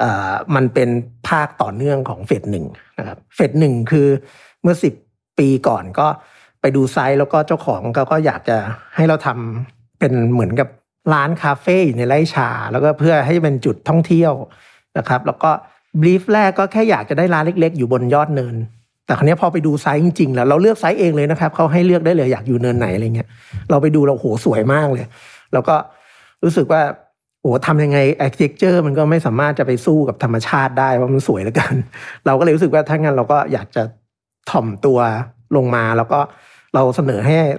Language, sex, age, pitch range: Thai, male, 60-79, 120-155 Hz